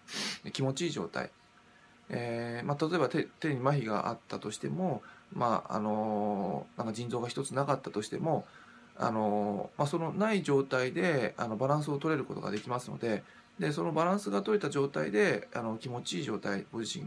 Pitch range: 110-155 Hz